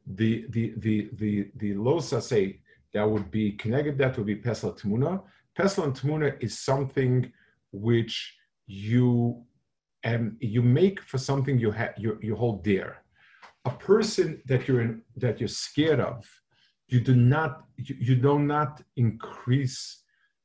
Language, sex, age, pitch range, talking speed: English, male, 50-69, 110-135 Hz, 145 wpm